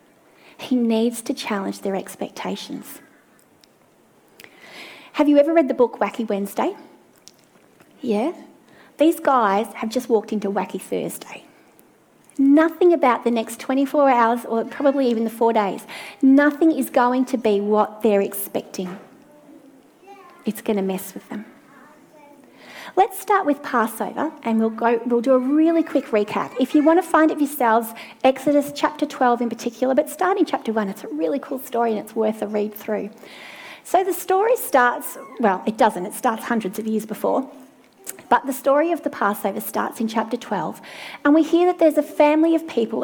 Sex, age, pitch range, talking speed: female, 30-49, 225-300 Hz, 170 wpm